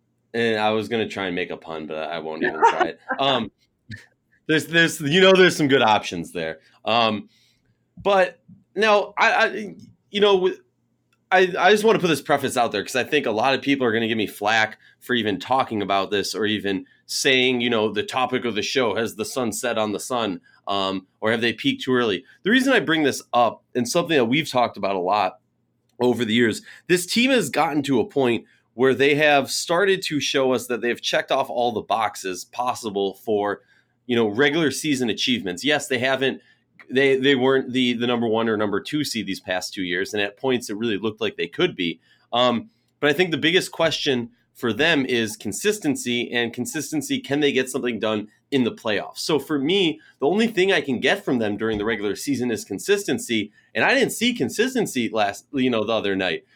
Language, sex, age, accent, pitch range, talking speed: English, male, 30-49, American, 110-150 Hz, 220 wpm